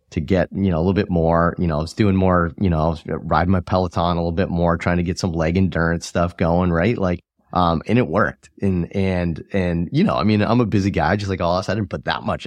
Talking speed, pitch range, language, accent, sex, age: 285 wpm, 80-100 Hz, English, American, male, 30-49